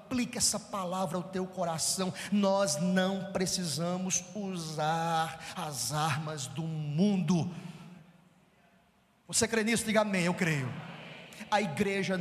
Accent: Brazilian